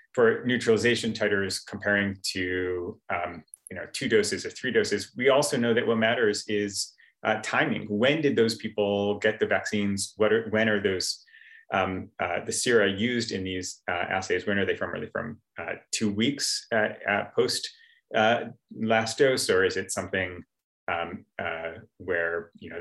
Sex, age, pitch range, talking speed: male, 30-49, 95-115 Hz, 170 wpm